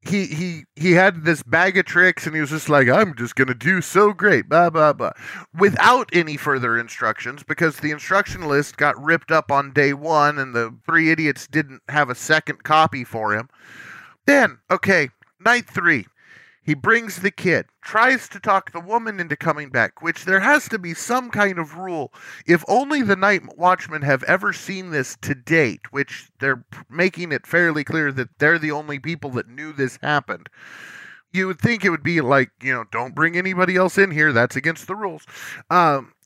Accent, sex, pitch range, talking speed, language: American, male, 145-185 Hz, 195 wpm, English